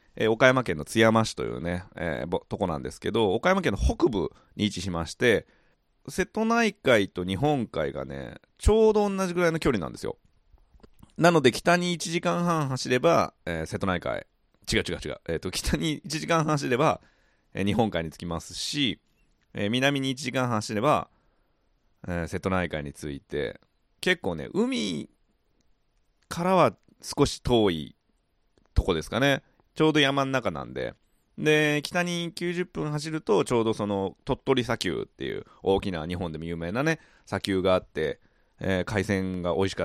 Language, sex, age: Japanese, male, 30-49